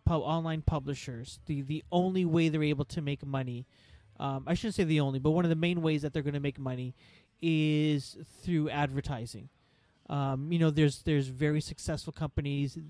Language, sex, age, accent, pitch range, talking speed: English, male, 30-49, American, 140-175 Hz, 185 wpm